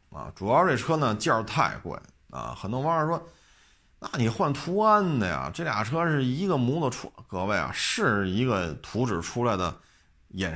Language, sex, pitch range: Chinese, male, 95-135 Hz